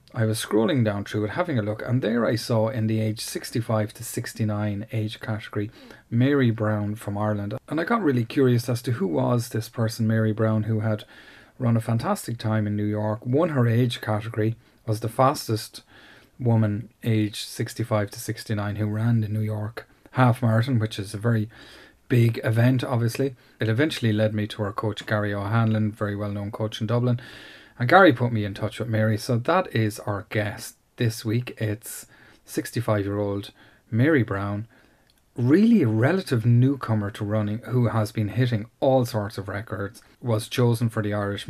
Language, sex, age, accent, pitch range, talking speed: English, male, 30-49, Irish, 105-120 Hz, 180 wpm